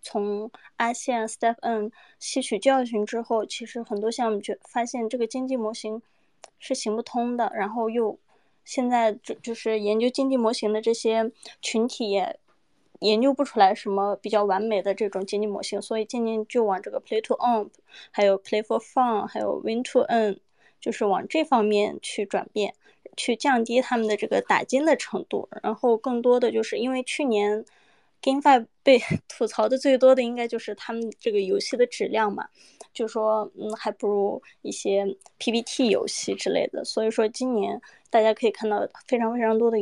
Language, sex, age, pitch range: Chinese, female, 20-39, 215-255 Hz